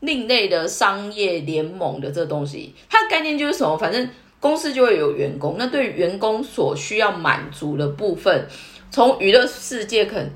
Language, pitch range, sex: Chinese, 155-240 Hz, female